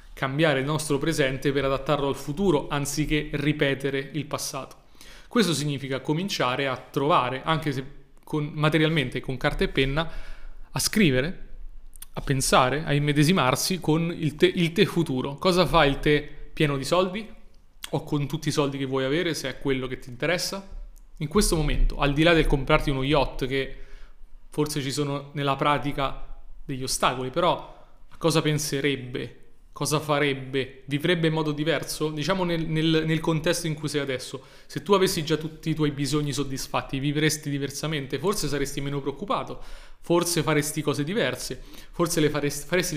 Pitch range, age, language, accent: 140-160 Hz, 30-49, Italian, native